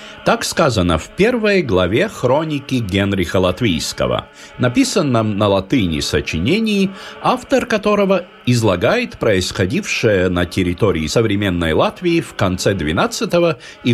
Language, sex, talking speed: Russian, male, 105 wpm